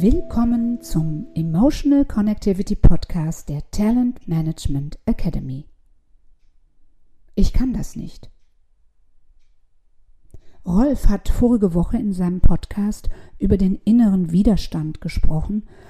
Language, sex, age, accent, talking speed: German, female, 50-69, German, 95 wpm